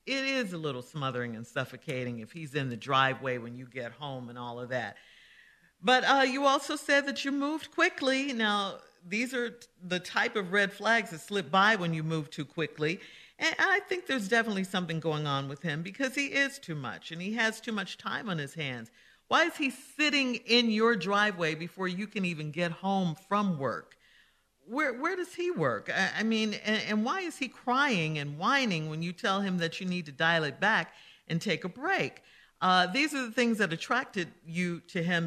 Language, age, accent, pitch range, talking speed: English, 50-69, American, 155-230 Hz, 215 wpm